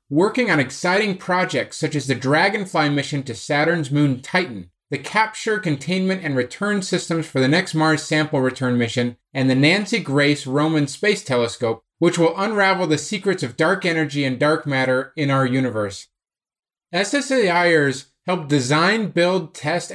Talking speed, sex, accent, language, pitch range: 155 wpm, male, American, English, 140-190 Hz